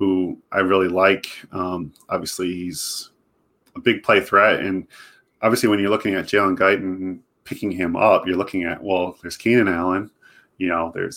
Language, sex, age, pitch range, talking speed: English, male, 30-49, 90-100 Hz, 170 wpm